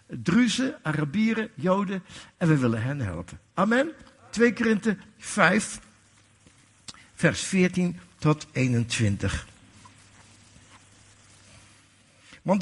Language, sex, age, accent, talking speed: Dutch, male, 60-79, Dutch, 80 wpm